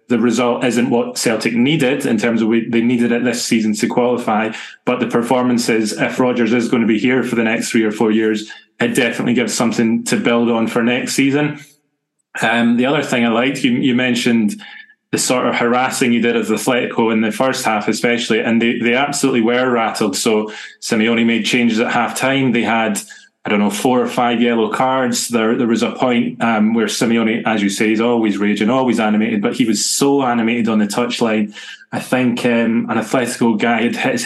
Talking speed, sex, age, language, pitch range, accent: 210 wpm, male, 20-39, English, 115-130 Hz, British